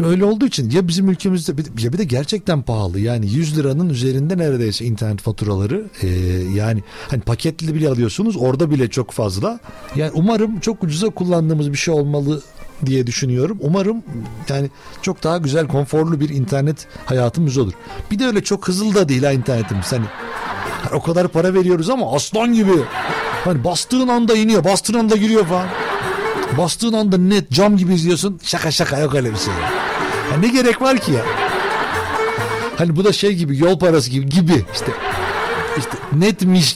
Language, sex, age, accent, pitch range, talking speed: Turkish, male, 60-79, native, 140-200 Hz, 170 wpm